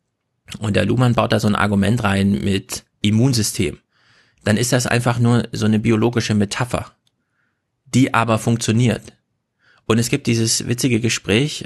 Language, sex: German, male